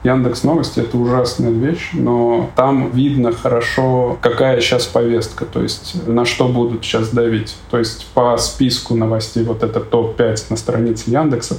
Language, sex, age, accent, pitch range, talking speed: Russian, male, 20-39, native, 115-130 Hz, 160 wpm